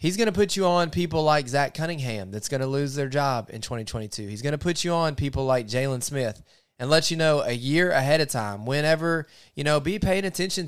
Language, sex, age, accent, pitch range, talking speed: English, male, 20-39, American, 115-155 Hz, 240 wpm